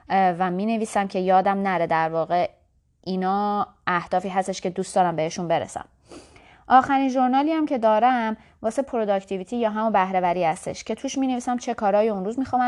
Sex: female